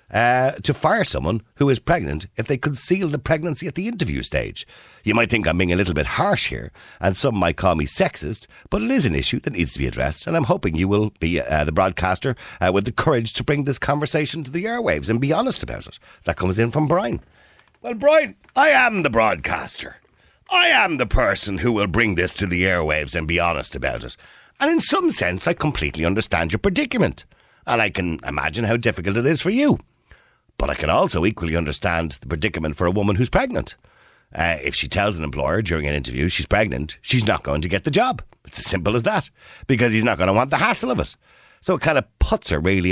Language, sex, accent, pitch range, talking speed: English, male, Irish, 80-120 Hz, 230 wpm